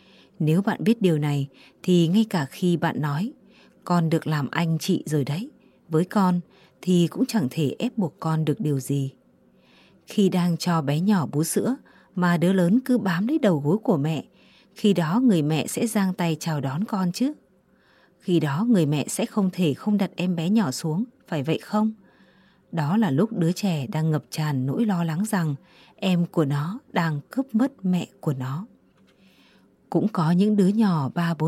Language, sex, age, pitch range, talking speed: Vietnamese, female, 20-39, 160-205 Hz, 190 wpm